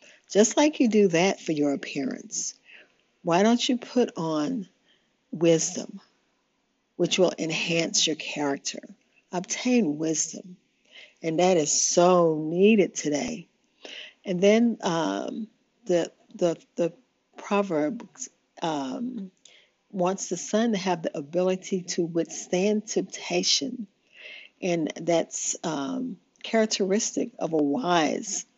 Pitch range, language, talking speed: 170-235 Hz, English, 110 wpm